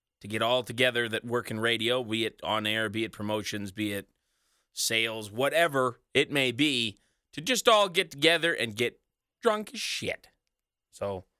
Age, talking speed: 20-39, 175 wpm